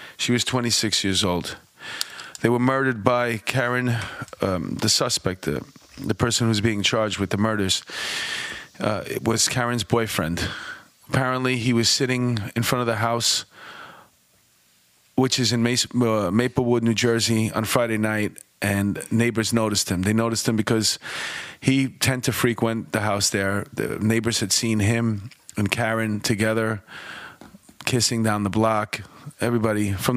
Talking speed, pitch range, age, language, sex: 155 wpm, 105-120 Hz, 30-49, English, male